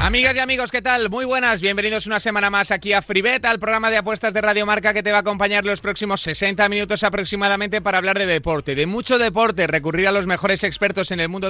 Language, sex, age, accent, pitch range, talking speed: Spanish, male, 30-49, Spanish, 155-210 Hz, 240 wpm